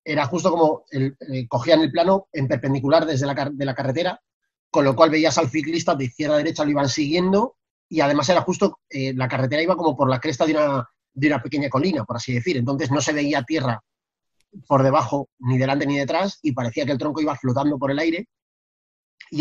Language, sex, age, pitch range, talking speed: Spanish, male, 30-49, 130-165 Hz, 210 wpm